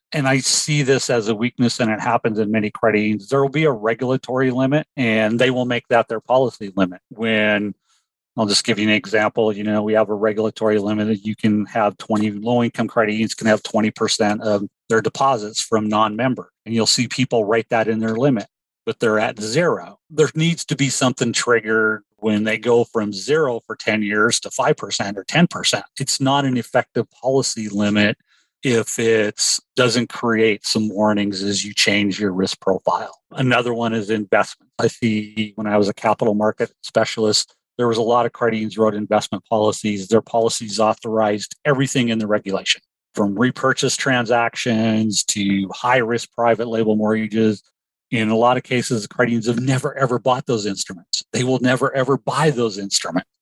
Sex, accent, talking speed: male, American, 185 wpm